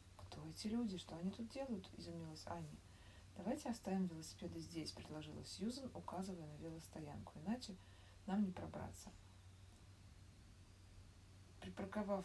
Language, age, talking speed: Russian, 20-39, 110 wpm